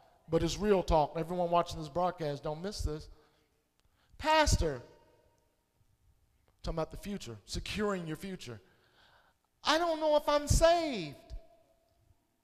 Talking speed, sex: 120 wpm, male